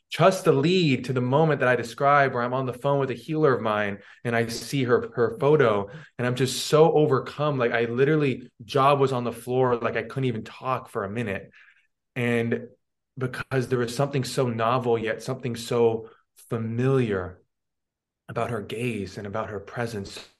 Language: English